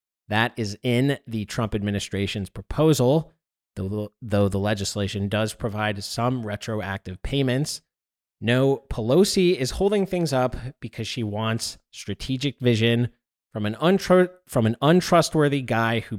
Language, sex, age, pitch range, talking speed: English, male, 30-49, 110-145 Hz, 120 wpm